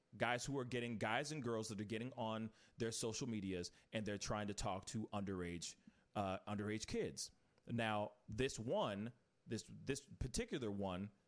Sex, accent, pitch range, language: male, American, 105-130 Hz, English